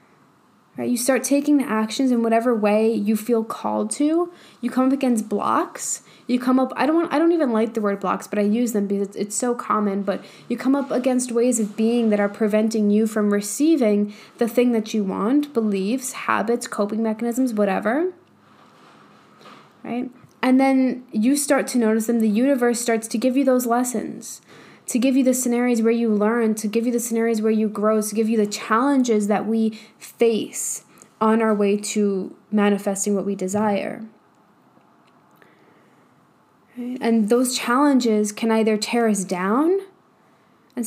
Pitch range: 215-250 Hz